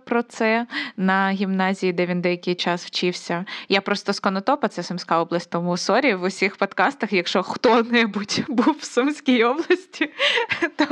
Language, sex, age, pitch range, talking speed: Ukrainian, female, 20-39, 180-230 Hz, 150 wpm